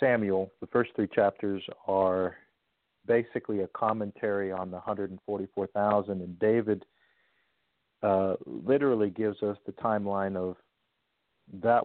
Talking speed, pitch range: 110 wpm, 100-115 Hz